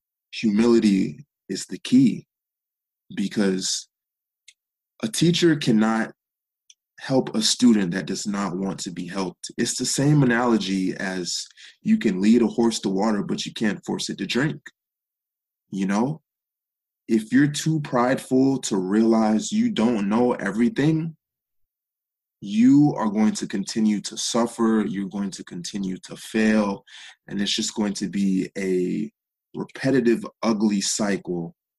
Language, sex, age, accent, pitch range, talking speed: English, male, 20-39, American, 100-145 Hz, 135 wpm